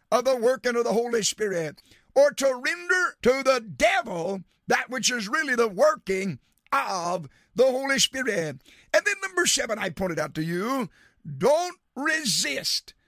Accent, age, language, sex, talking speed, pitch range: American, 50-69, English, male, 155 wpm, 205-285 Hz